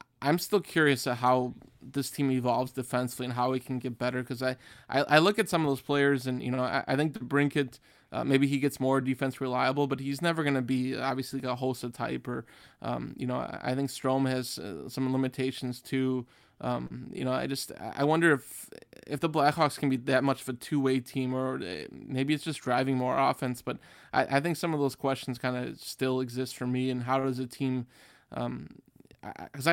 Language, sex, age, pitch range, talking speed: English, male, 20-39, 125-140 Hz, 225 wpm